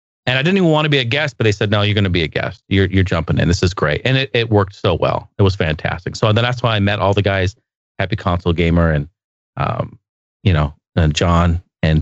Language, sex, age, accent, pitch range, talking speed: English, male, 30-49, American, 95-115 Hz, 265 wpm